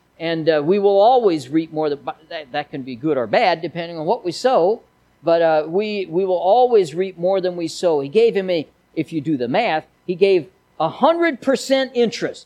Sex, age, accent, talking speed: male, 50-69, American, 215 wpm